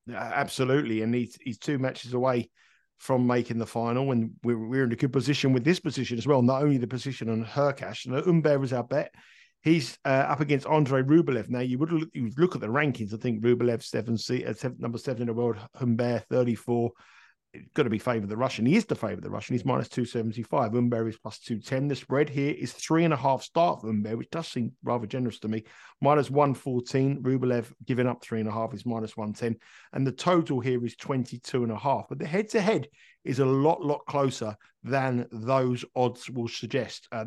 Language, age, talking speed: English, 50-69, 215 wpm